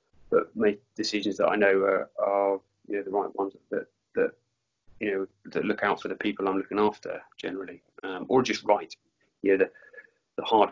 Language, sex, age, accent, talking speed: English, male, 30-49, British, 200 wpm